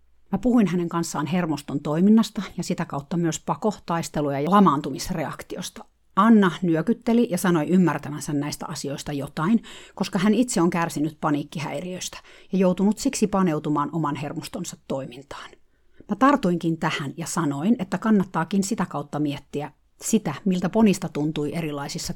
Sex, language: female, Finnish